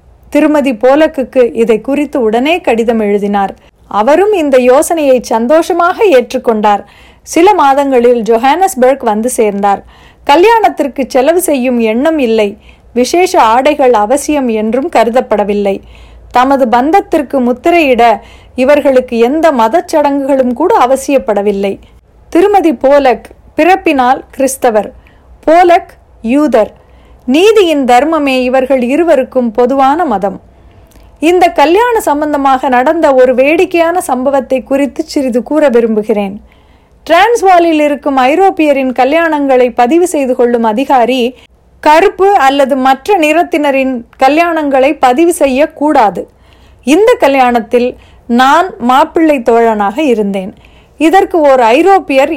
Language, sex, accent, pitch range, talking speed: Tamil, female, native, 245-320 Hz, 95 wpm